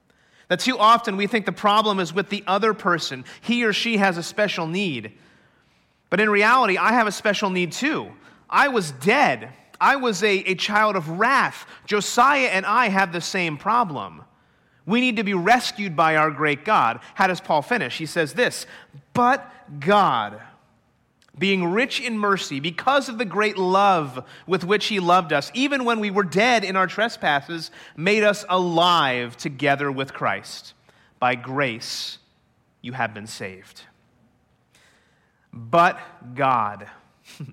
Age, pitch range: 30-49, 160-215 Hz